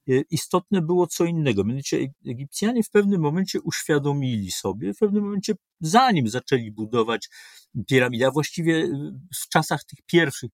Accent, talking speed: native, 130 wpm